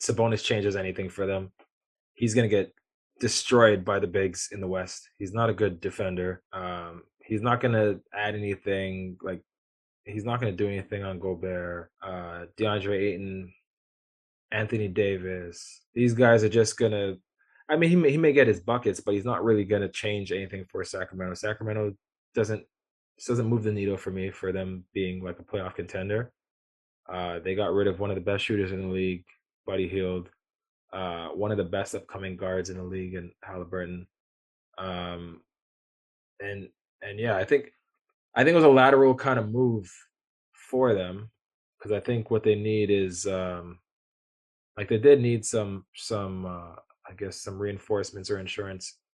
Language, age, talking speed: English, 20-39, 180 wpm